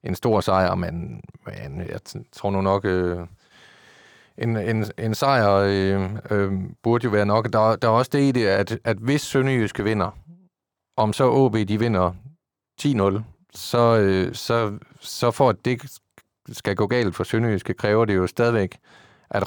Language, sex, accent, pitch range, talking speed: Danish, male, native, 95-115 Hz, 170 wpm